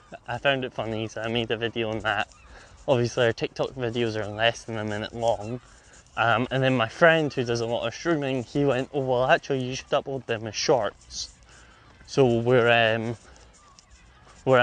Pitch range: 110-130 Hz